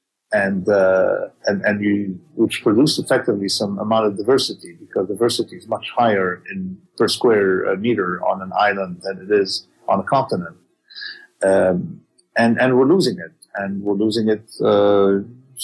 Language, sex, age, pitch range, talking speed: English, male, 40-59, 105-170 Hz, 155 wpm